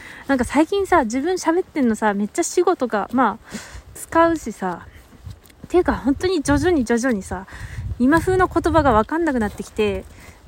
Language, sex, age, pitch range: Japanese, female, 20-39, 225-315 Hz